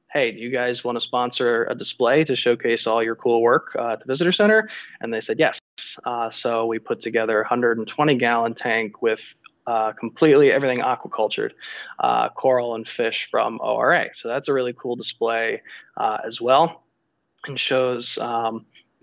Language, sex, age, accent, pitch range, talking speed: English, male, 20-39, American, 115-130 Hz, 170 wpm